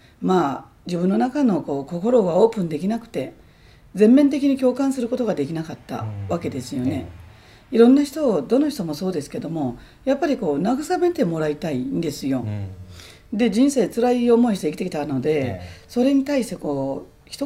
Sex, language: female, Japanese